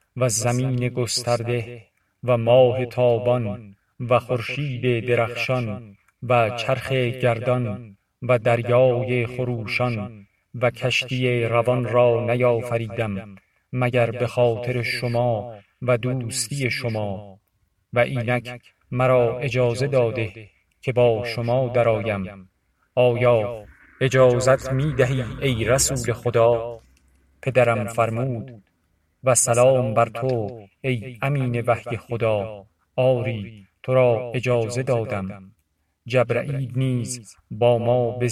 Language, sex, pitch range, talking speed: Persian, male, 110-125 Hz, 95 wpm